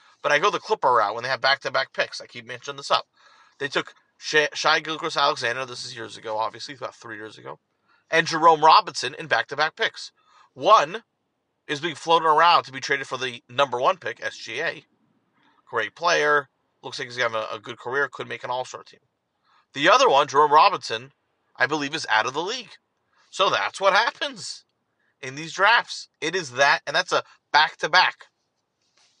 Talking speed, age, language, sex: 195 wpm, 30-49, English, male